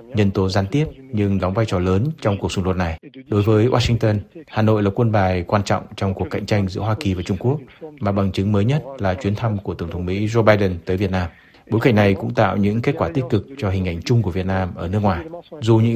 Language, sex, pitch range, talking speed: Vietnamese, male, 95-120 Hz, 275 wpm